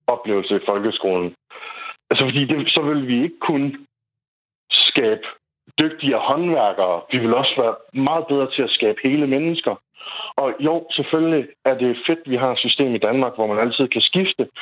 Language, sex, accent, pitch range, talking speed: Danish, male, native, 125-160 Hz, 175 wpm